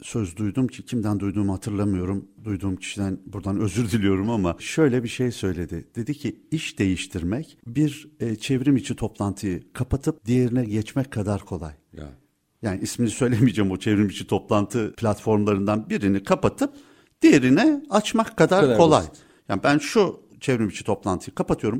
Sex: male